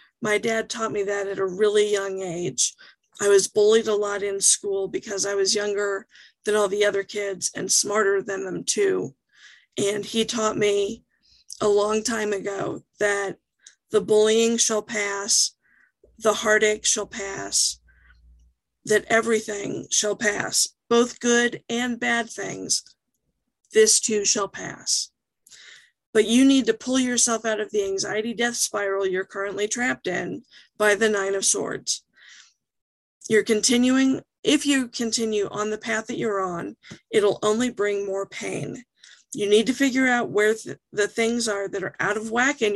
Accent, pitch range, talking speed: American, 205-235 Hz, 160 wpm